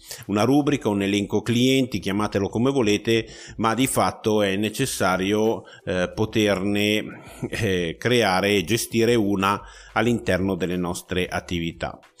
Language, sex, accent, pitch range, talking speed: Italian, male, native, 100-120 Hz, 120 wpm